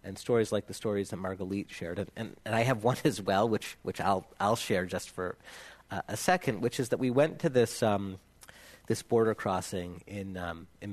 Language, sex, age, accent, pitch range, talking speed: English, male, 40-59, American, 95-120 Hz, 220 wpm